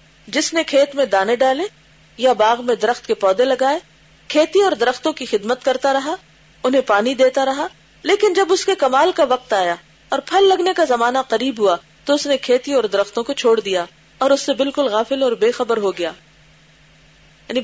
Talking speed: 200 wpm